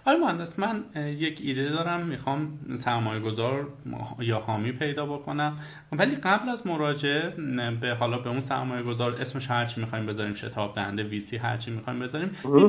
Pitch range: 120-155 Hz